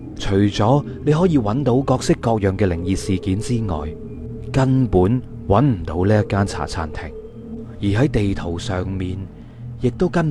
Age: 30-49